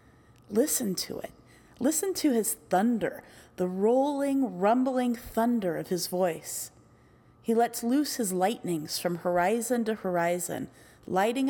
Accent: American